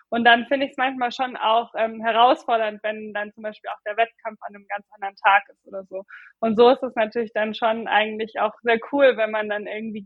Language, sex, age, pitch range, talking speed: German, female, 20-39, 210-230 Hz, 240 wpm